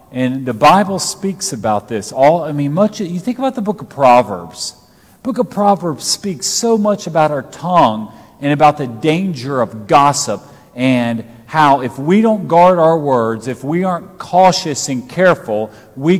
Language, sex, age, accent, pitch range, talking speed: English, male, 40-59, American, 125-180 Hz, 180 wpm